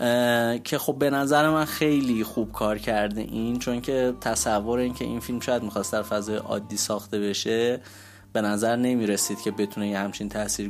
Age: 20-39